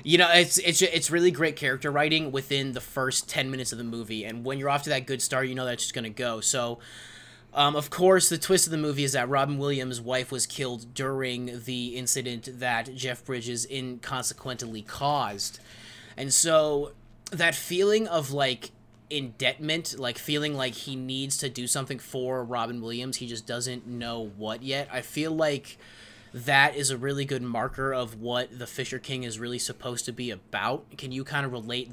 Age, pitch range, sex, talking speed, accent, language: 20-39, 115-135 Hz, male, 195 wpm, American, English